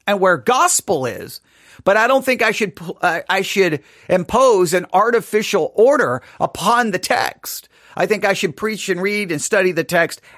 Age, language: 40-59, English